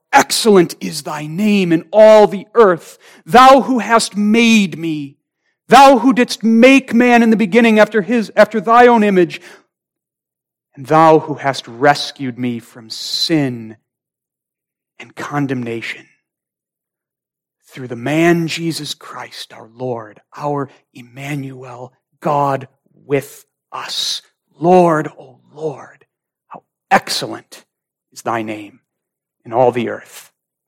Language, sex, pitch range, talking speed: English, male, 140-195 Hz, 120 wpm